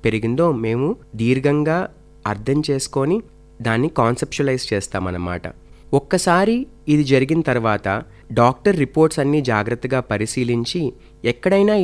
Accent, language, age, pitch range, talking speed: native, Telugu, 30-49, 115-155 Hz, 90 wpm